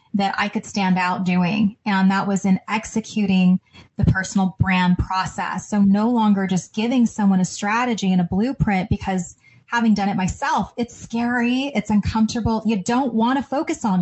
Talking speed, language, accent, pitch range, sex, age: 170 wpm, English, American, 185-225 Hz, female, 20-39